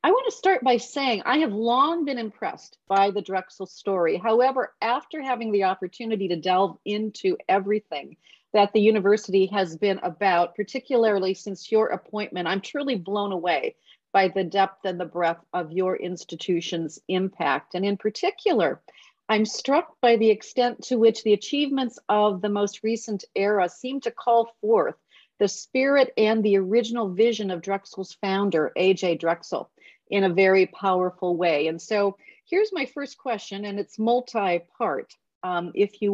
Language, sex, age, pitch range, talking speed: English, female, 40-59, 190-250 Hz, 160 wpm